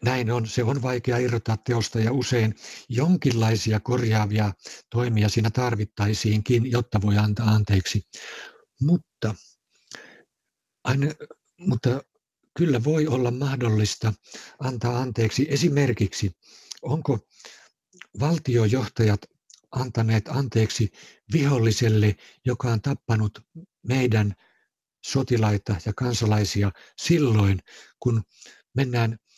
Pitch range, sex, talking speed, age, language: 110-130 Hz, male, 85 wpm, 60-79, Finnish